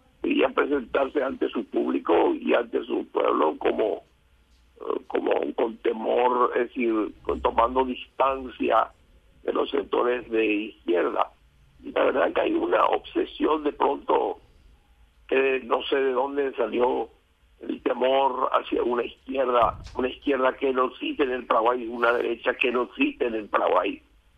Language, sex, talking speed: Spanish, male, 150 wpm